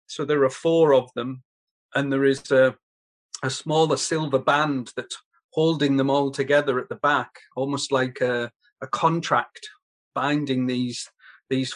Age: 40-59